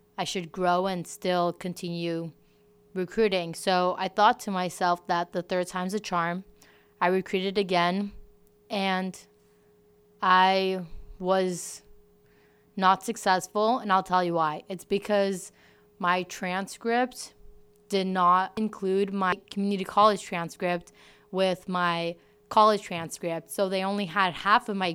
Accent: American